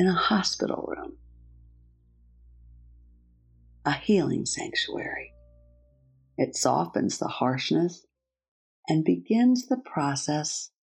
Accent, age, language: American, 50-69, English